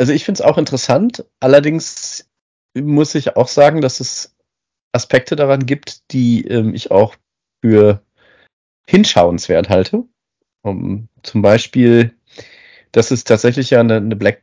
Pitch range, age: 115-140 Hz, 40-59